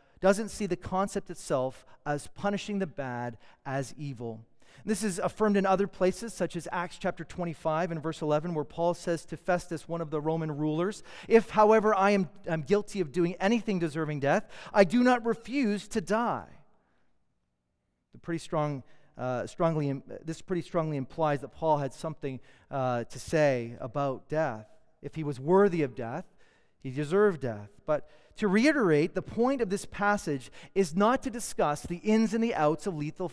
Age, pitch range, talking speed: 40-59, 140-200 Hz, 180 wpm